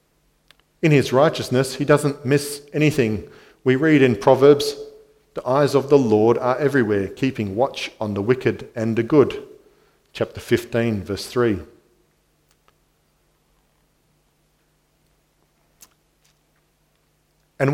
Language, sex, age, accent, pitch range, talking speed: English, male, 40-59, Australian, 115-150 Hz, 105 wpm